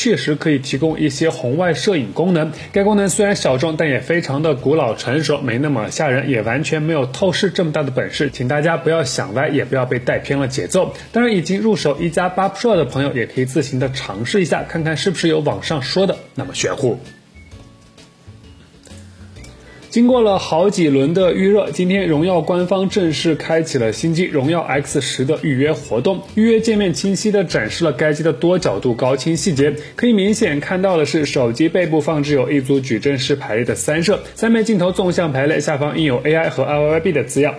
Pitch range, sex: 140-185 Hz, male